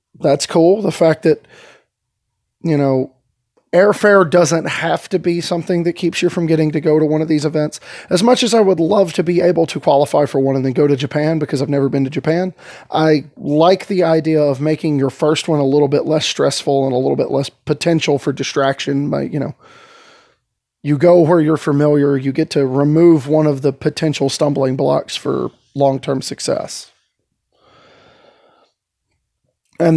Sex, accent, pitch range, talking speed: male, American, 140-165 Hz, 185 wpm